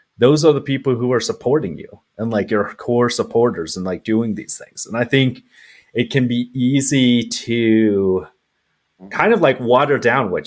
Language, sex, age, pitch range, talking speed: English, male, 30-49, 105-130 Hz, 185 wpm